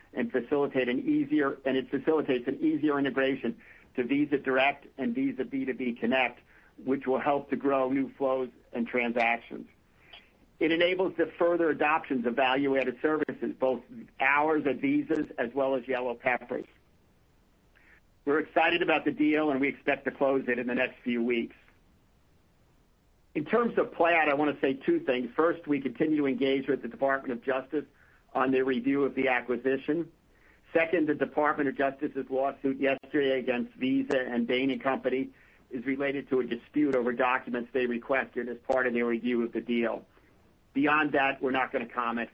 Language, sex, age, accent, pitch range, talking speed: English, male, 50-69, American, 125-145 Hz, 175 wpm